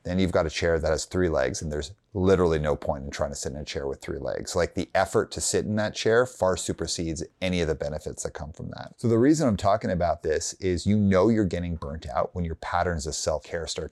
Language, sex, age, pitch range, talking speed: English, male, 30-49, 80-100 Hz, 265 wpm